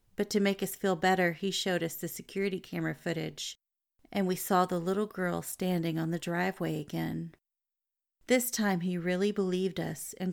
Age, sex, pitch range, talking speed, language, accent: 30-49, female, 170-200 Hz, 180 wpm, English, American